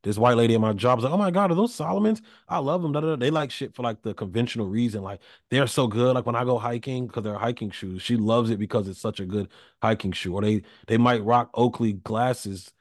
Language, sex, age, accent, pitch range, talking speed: English, male, 30-49, American, 100-125 Hz, 260 wpm